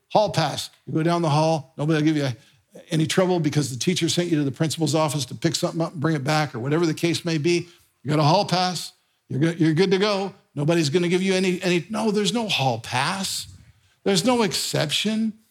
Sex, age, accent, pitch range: male, 50-69, American, 155-210 Hz